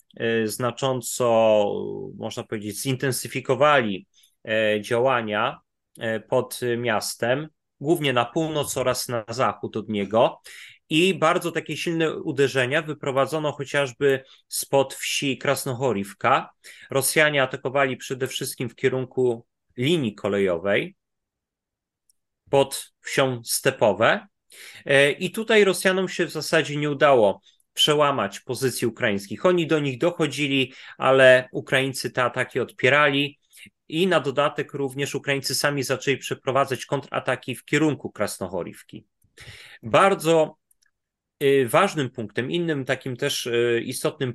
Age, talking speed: 30-49, 100 wpm